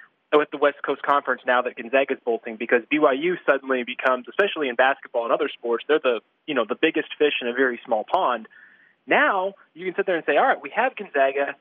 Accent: American